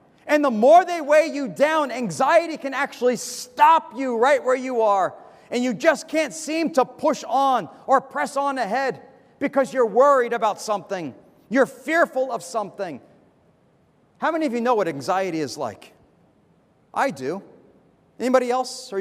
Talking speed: 160 wpm